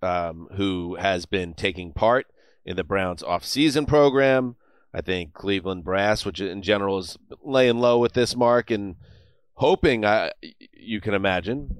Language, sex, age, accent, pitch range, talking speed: English, male, 30-49, American, 95-115 Hz, 155 wpm